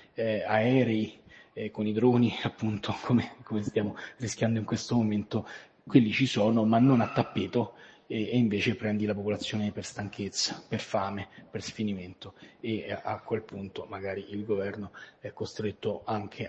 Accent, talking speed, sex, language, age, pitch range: native, 155 wpm, male, Italian, 30-49, 105-120 Hz